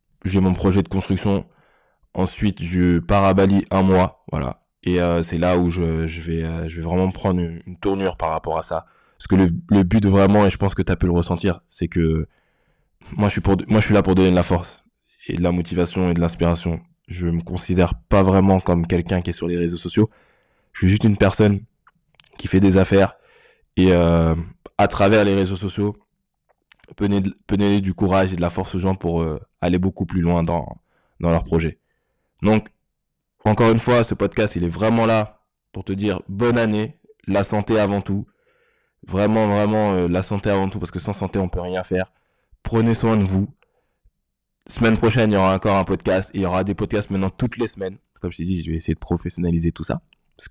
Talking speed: 225 wpm